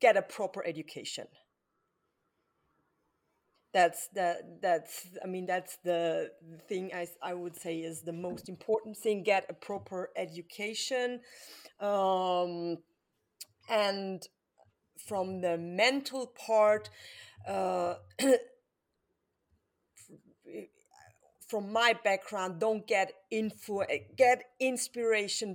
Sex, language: female, English